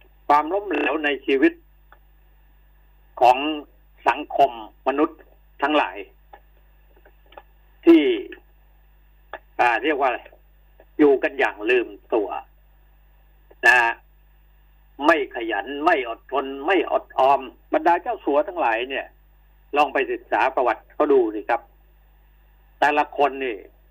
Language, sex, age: Thai, male, 60-79